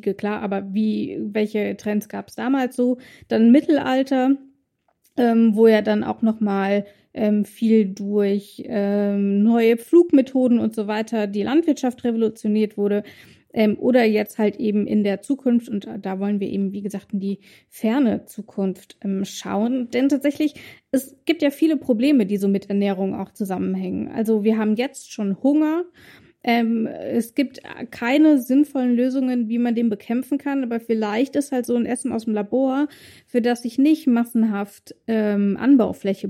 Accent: German